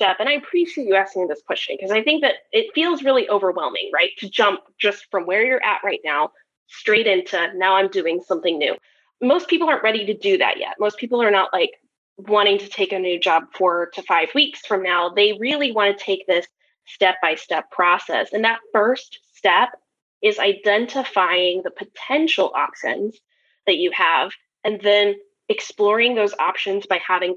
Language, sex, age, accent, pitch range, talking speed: English, female, 20-39, American, 190-255 Hz, 185 wpm